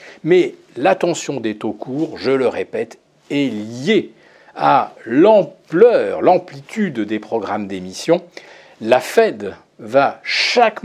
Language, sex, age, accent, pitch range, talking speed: French, male, 40-59, French, 125-210 Hz, 110 wpm